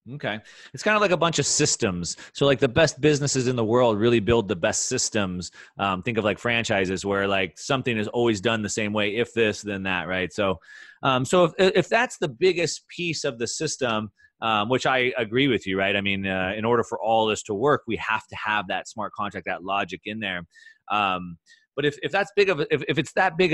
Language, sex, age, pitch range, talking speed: English, male, 30-49, 110-145 Hz, 240 wpm